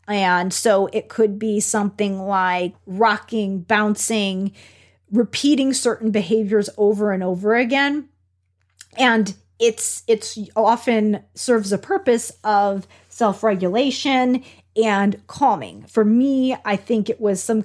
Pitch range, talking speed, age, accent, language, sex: 190-230 Hz, 115 wpm, 30-49, American, English, female